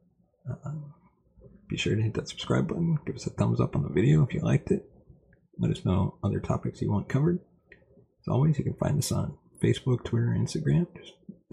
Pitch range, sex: 90-150 Hz, male